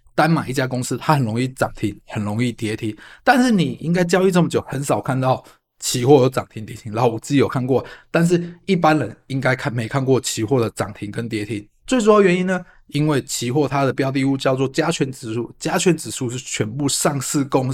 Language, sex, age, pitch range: Chinese, male, 20-39, 120-160 Hz